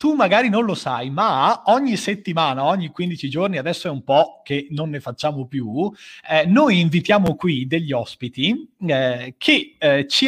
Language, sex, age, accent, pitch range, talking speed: Italian, male, 30-49, native, 135-200 Hz, 175 wpm